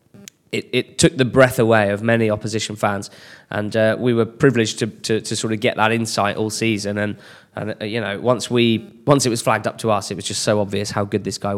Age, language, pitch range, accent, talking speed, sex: 20-39, English, 105-120 Hz, British, 250 wpm, male